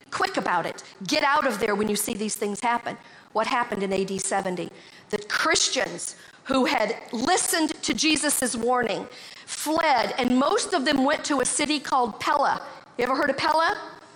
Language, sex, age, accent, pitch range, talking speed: English, female, 50-69, American, 225-295 Hz, 180 wpm